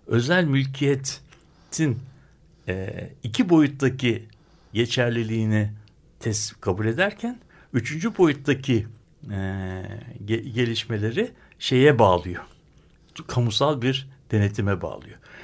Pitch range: 115-155 Hz